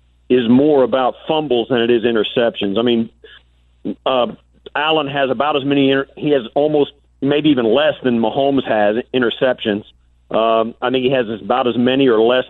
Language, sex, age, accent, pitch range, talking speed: English, male, 50-69, American, 110-140 Hz, 175 wpm